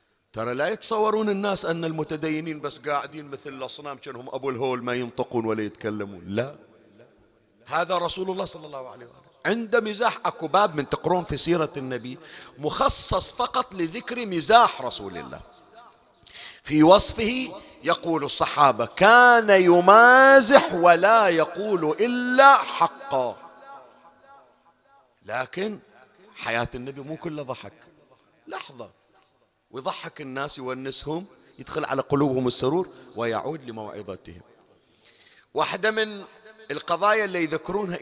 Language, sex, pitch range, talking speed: Arabic, male, 130-195 Hz, 110 wpm